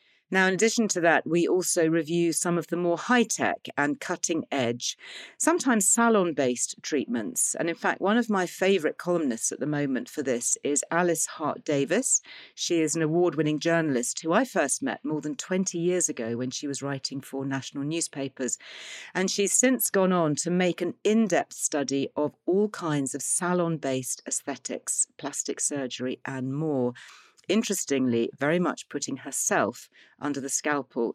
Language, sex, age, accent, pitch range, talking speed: English, female, 40-59, British, 140-185 Hz, 160 wpm